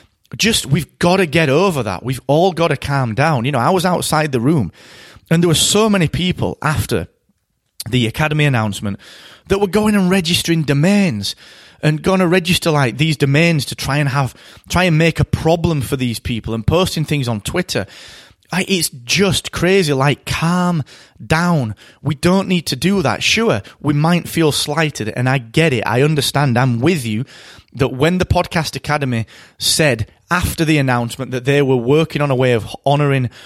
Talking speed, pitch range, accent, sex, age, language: 190 wpm, 120-165 Hz, British, male, 30-49, English